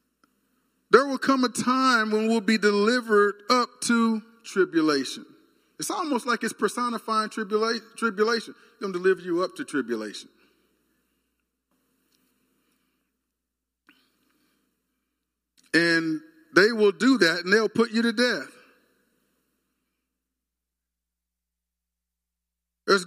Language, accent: English, American